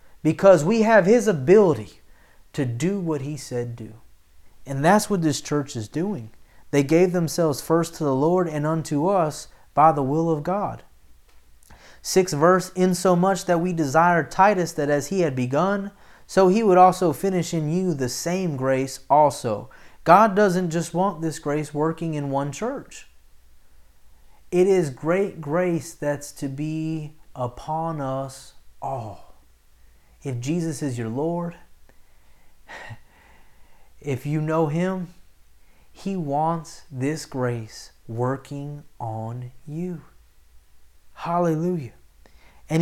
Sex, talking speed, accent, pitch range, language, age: male, 130 wpm, American, 125-170 Hz, English, 30-49